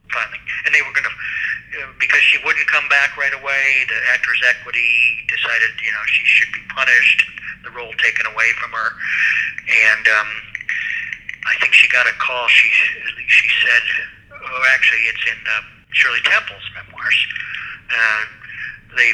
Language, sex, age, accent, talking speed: English, male, 50-69, American, 155 wpm